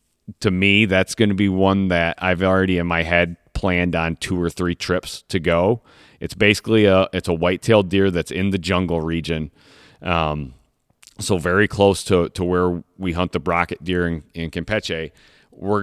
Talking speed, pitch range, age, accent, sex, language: 185 wpm, 85-95 Hz, 30-49, American, male, English